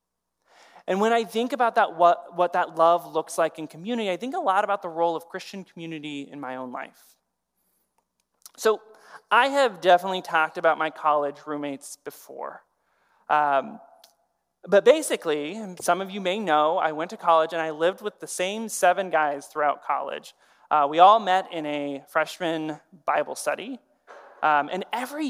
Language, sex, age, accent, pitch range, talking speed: English, male, 20-39, American, 155-205 Hz, 170 wpm